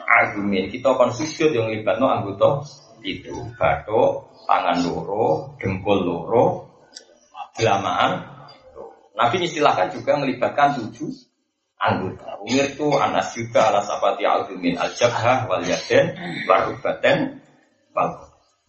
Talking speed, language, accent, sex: 110 wpm, Indonesian, native, male